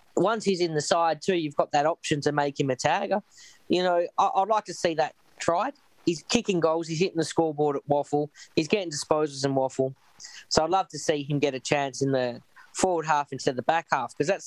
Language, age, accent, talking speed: English, 20-39, Australian, 240 wpm